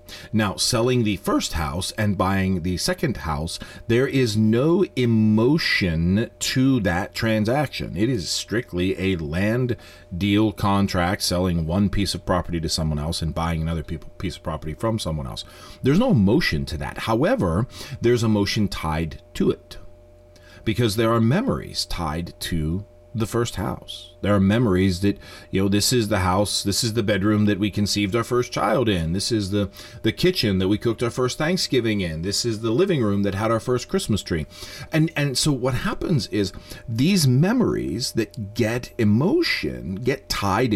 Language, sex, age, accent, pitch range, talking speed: English, male, 30-49, American, 85-115 Hz, 175 wpm